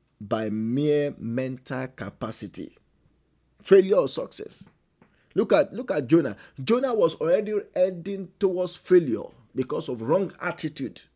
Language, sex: English, male